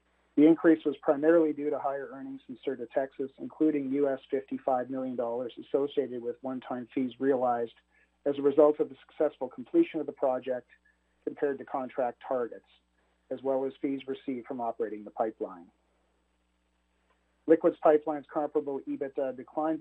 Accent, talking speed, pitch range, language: American, 145 wpm, 125-145 Hz, English